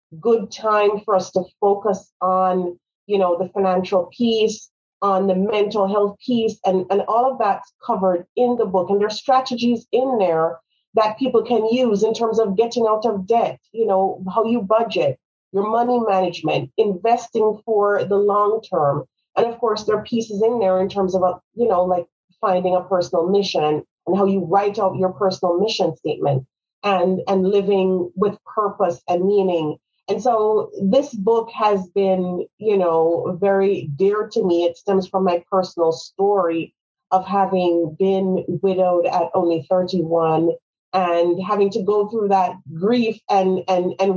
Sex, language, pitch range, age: female, English, 180-215 Hz, 40-59